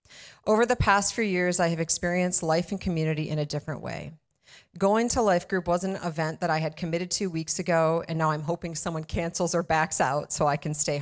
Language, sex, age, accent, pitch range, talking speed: English, female, 30-49, American, 160-195 Hz, 230 wpm